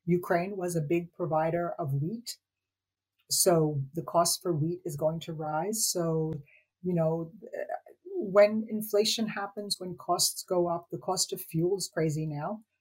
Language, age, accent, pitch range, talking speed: English, 50-69, American, 155-195 Hz, 155 wpm